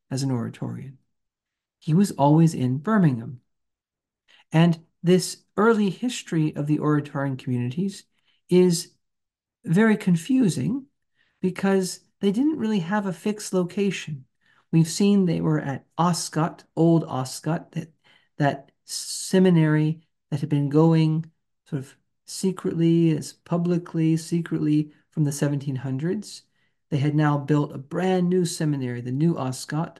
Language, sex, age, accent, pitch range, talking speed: English, male, 40-59, American, 145-185 Hz, 125 wpm